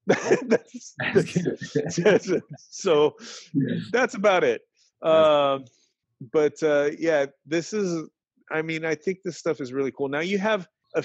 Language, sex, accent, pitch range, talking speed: English, male, American, 125-150 Hz, 140 wpm